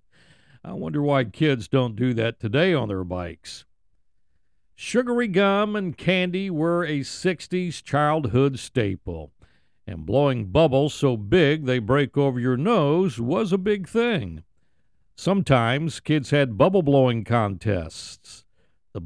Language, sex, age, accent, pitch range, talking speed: English, male, 60-79, American, 115-175 Hz, 130 wpm